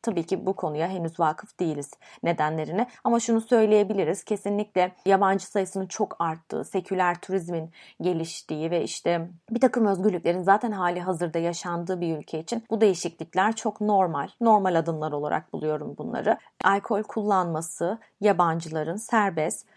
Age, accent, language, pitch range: 30-49, native, Turkish, 180-230 Hz